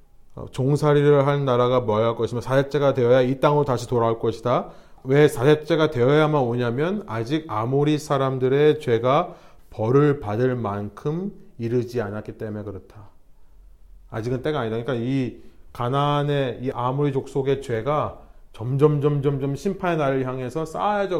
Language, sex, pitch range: Korean, male, 110-145 Hz